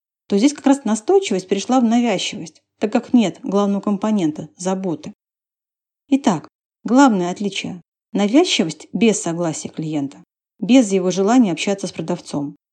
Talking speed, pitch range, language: 125 wpm, 180-240 Hz, Russian